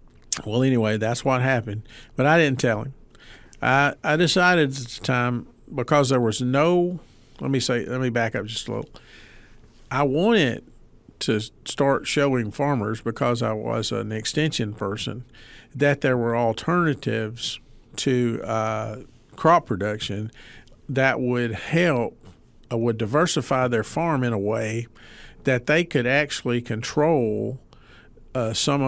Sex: male